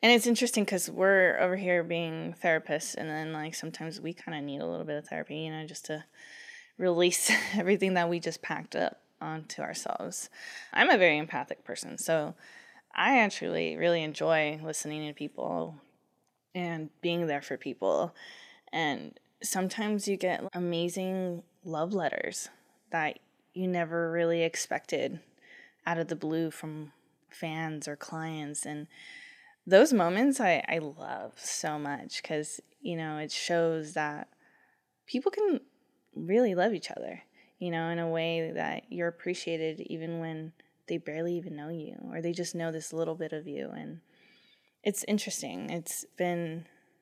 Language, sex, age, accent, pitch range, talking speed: English, female, 20-39, American, 160-205 Hz, 155 wpm